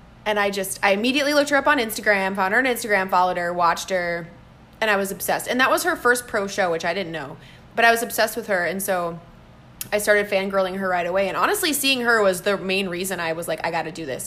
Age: 20-39